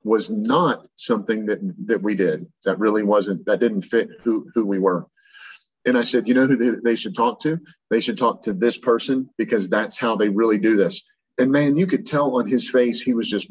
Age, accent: 40-59, American